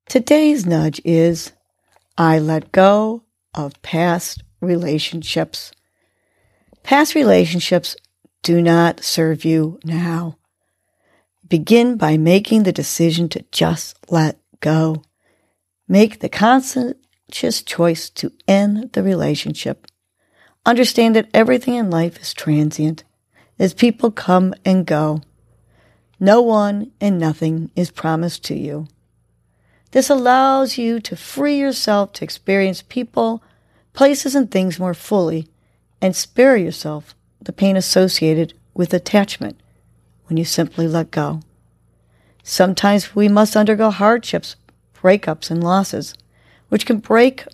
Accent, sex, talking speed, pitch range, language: American, female, 115 wpm, 160-215 Hz, English